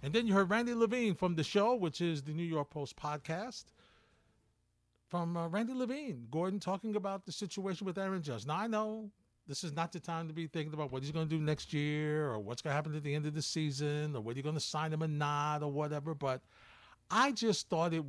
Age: 50-69